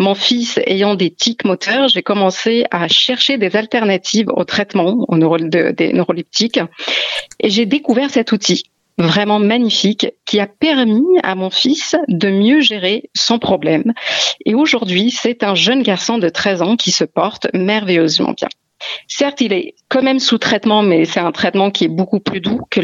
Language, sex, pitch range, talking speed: French, female, 180-240 Hz, 175 wpm